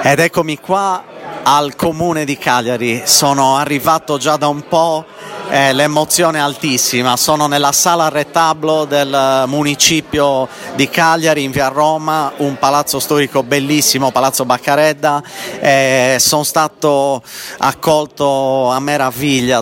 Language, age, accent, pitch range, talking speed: Italian, 40-59, native, 125-150 Hz, 120 wpm